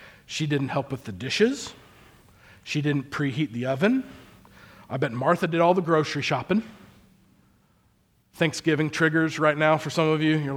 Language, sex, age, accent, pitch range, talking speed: English, male, 40-59, American, 155-265 Hz, 165 wpm